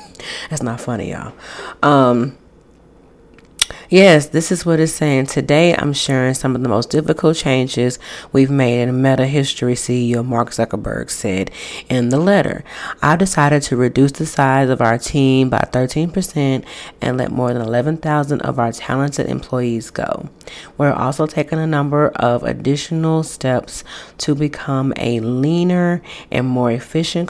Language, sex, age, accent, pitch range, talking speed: English, female, 30-49, American, 125-150 Hz, 155 wpm